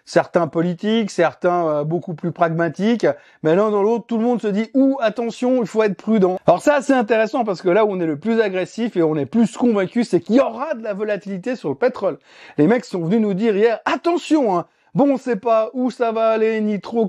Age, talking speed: 30-49, 255 wpm